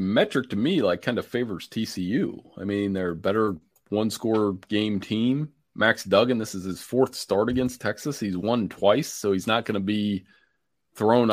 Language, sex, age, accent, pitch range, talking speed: English, male, 30-49, American, 100-125 Hz, 180 wpm